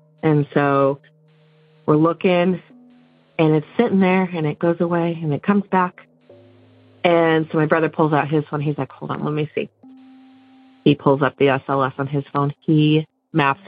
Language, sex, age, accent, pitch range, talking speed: English, female, 30-49, American, 145-190 Hz, 180 wpm